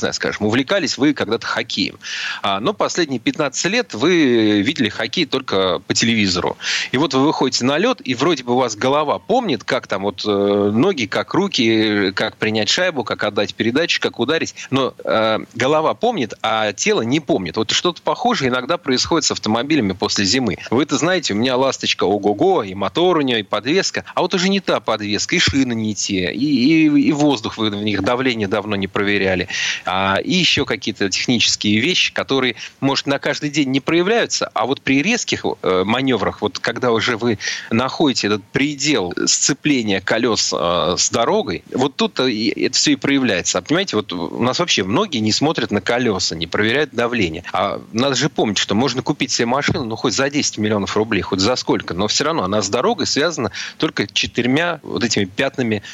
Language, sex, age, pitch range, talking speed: Russian, male, 30-49, 105-145 Hz, 190 wpm